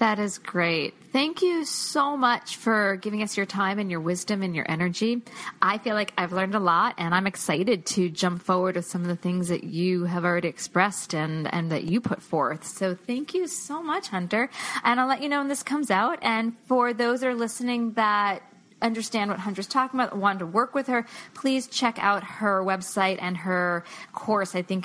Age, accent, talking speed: 40-59, American, 215 wpm